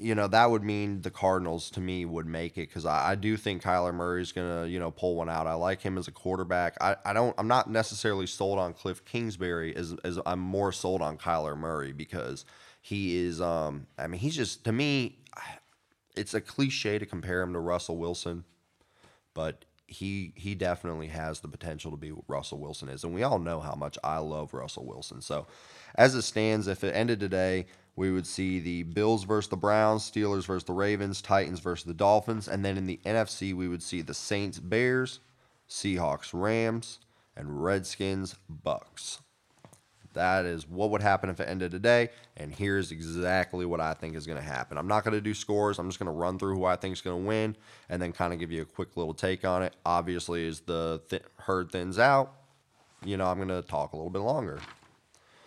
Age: 20-39